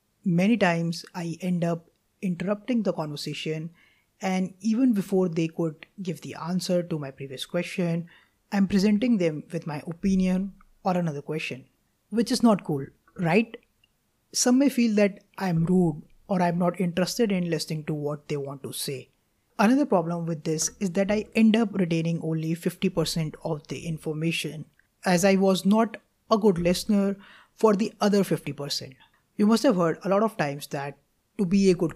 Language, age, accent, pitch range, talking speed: English, 20-39, Indian, 160-205 Hz, 170 wpm